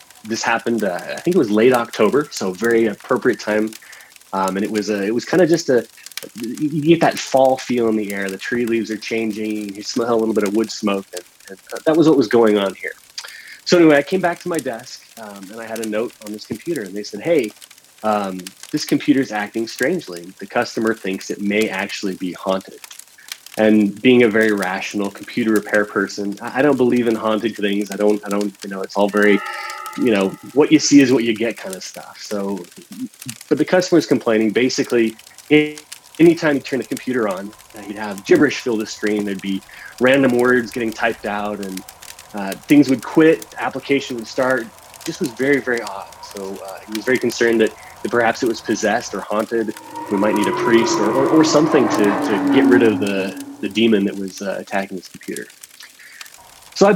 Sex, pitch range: male, 100-130 Hz